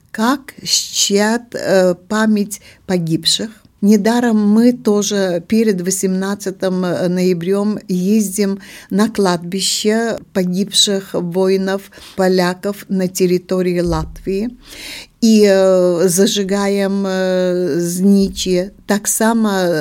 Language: Russian